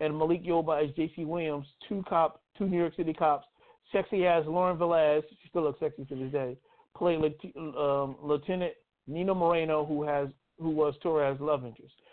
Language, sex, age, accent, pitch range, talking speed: English, male, 50-69, American, 145-165 Hz, 180 wpm